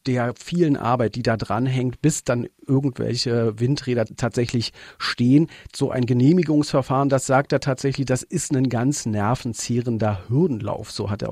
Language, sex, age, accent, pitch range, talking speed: German, male, 40-59, German, 120-145 Hz, 150 wpm